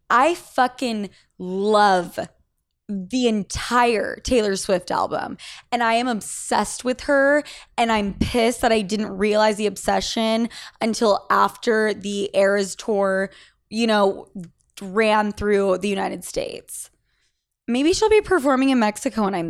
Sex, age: female, 20-39